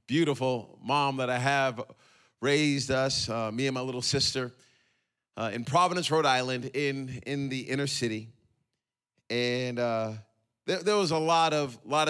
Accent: American